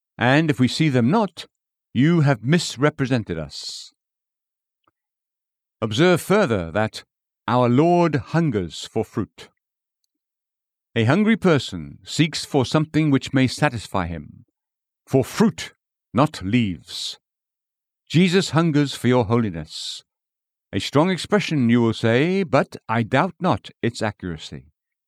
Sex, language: male, English